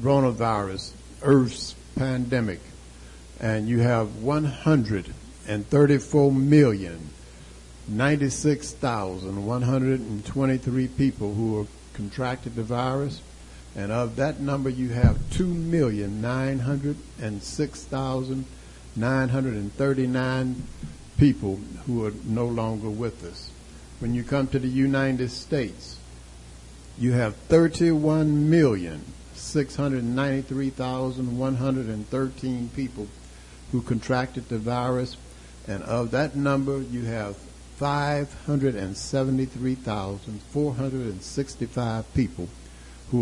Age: 60-79